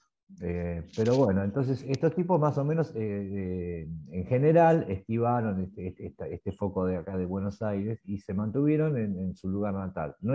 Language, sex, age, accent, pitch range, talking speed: Spanish, male, 50-69, Argentinian, 90-110 Hz, 185 wpm